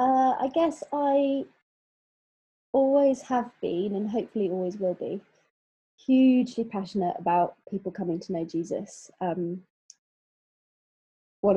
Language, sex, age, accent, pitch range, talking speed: English, female, 20-39, British, 175-205 Hz, 115 wpm